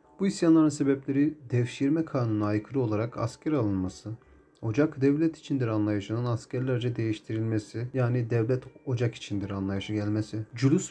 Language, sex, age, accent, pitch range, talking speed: Turkish, male, 40-59, native, 105-135 Hz, 120 wpm